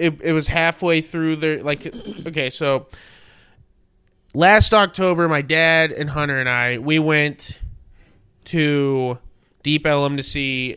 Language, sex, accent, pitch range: English, male, American, 135-155 Hz